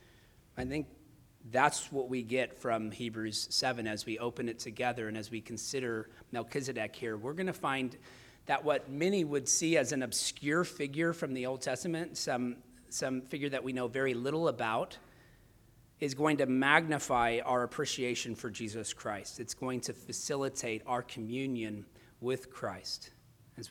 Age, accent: 40-59, American